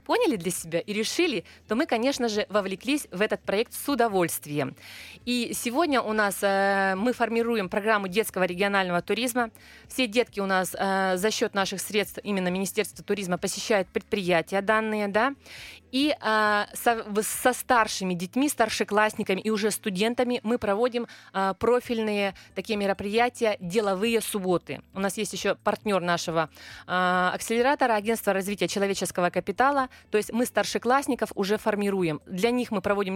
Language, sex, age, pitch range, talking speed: Russian, female, 20-39, 195-230 Hz, 145 wpm